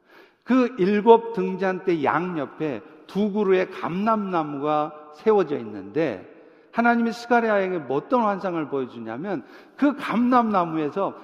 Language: Korean